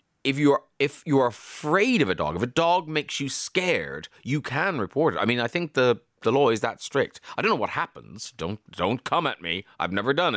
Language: English